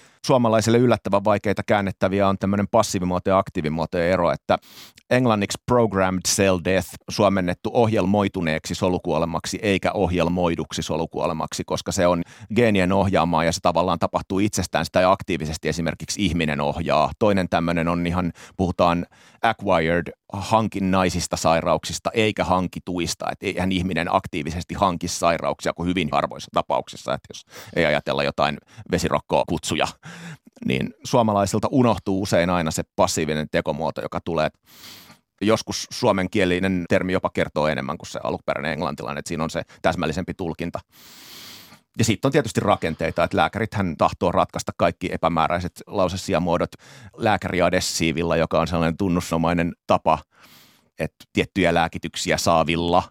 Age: 30-49